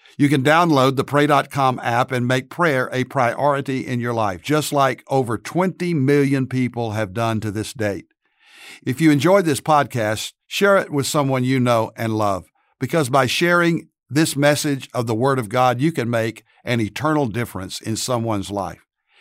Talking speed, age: 180 wpm, 60-79